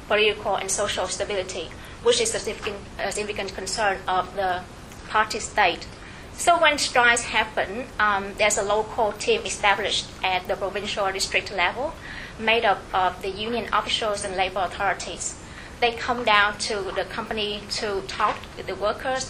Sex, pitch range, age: female, 195-230 Hz, 20-39